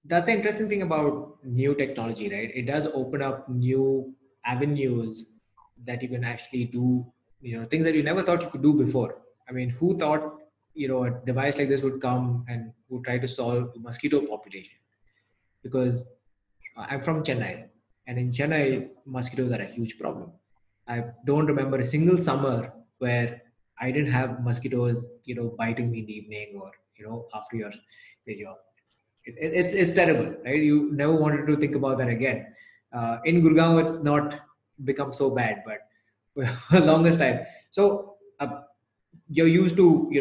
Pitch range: 120-150 Hz